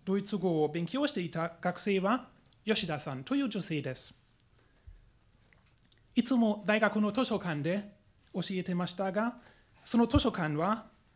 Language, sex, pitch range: Japanese, male, 150-205 Hz